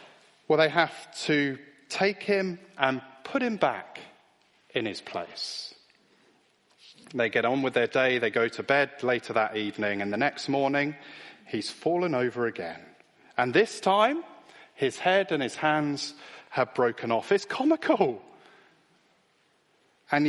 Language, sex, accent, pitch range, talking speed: English, male, British, 140-210 Hz, 140 wpm